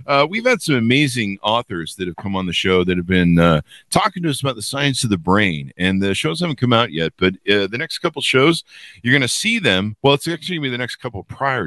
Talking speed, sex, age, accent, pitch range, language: 275 wpm, male, 50-69, American, 90-140 Hz, English